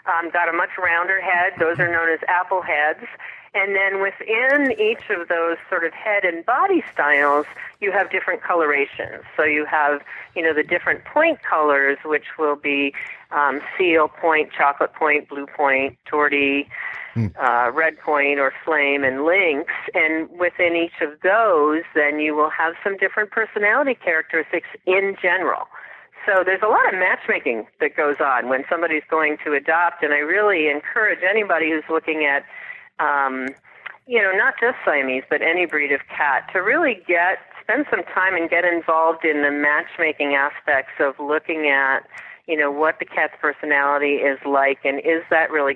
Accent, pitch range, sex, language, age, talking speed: American, 145-180 Hz, female, English, 40-59, 170 wpm